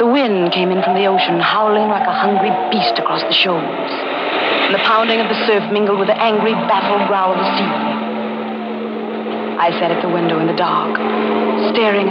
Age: 50-69